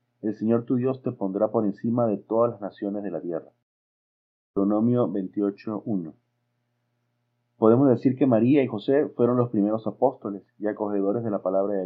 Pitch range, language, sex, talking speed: 105-120 Hz, Spanish, male, 165 wpm